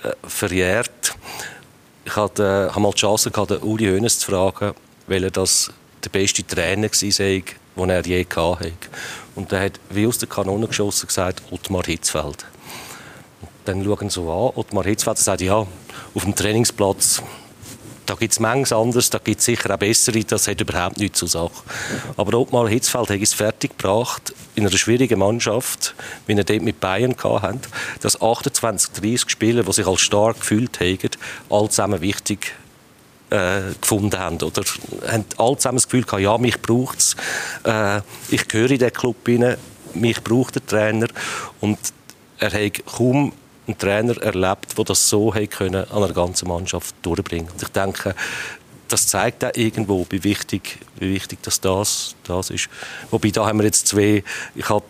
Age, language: 40-59, German